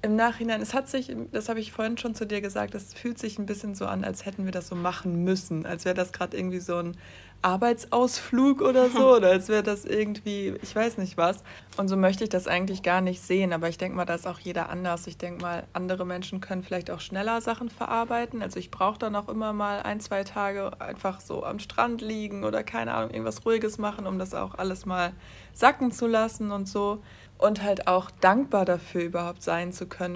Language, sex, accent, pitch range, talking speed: German, female, German, 180-220 Hz, 230 wpm